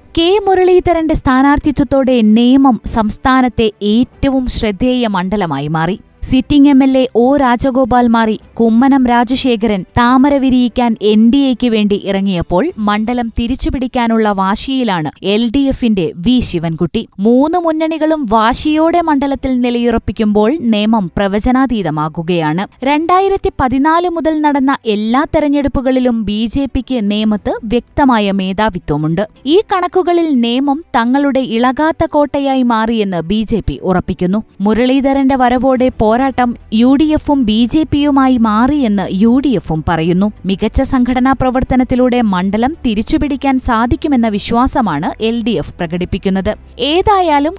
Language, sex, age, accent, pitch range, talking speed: Malayalam, female, 20-39, native, 215-275 Hz, 95 wpm